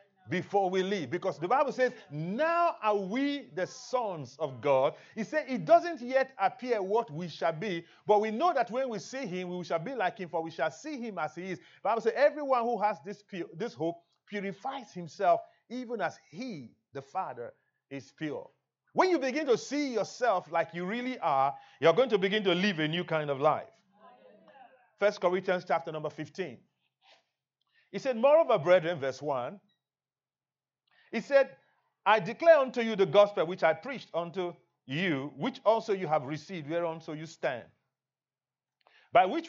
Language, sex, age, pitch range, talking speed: English, male, 40-59, 160-230 Hz, 185 wpm